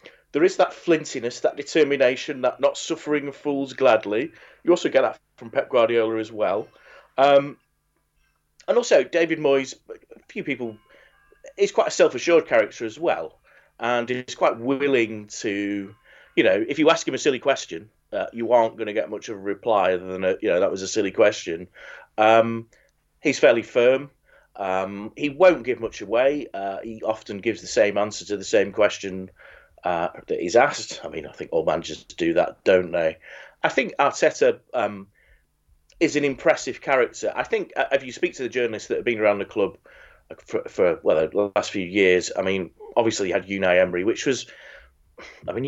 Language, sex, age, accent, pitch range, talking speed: English, male, 30-49, British, 100-165 Hz, 190 wpm